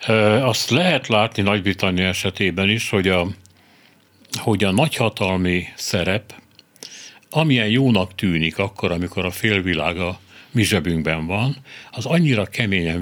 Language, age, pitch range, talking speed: Hungarian, 60-79, 95-120 Hz, 125 wpm